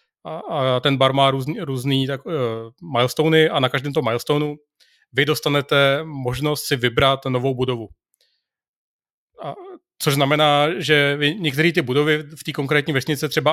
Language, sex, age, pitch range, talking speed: Czech, male, 30-49, 135-150 Hz, 140 wpm